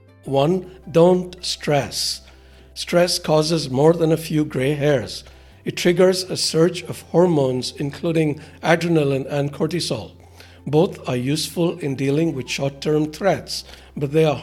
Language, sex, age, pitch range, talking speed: English, male, 60-79, 125-165 Hz, 135 wpm